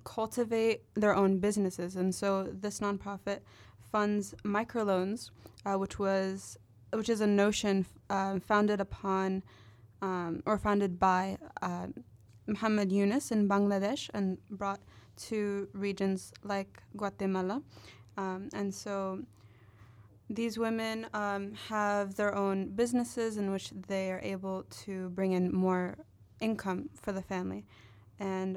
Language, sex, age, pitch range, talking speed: English, female, 20-39, 175-205 Hz, 125 wpm